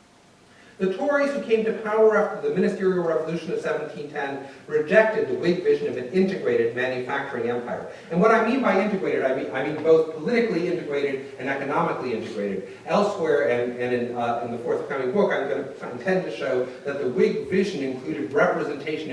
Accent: American